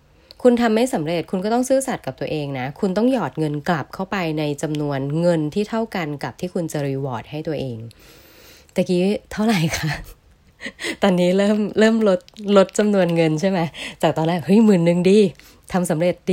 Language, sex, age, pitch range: Thai, female, 20-39, 150-200 Hz